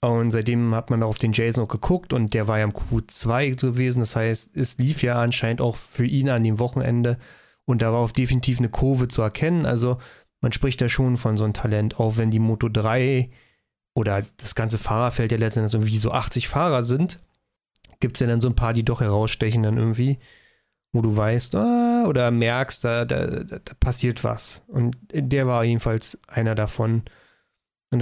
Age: 30-49